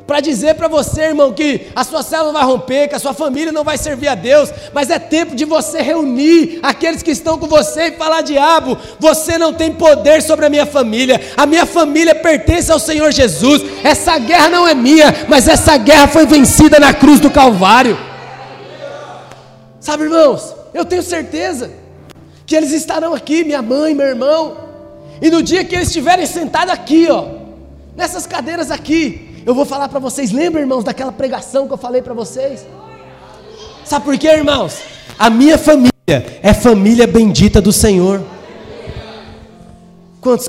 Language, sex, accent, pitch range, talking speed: Portuguese, male, Brazilian, 245-310 Hz, 170 wpm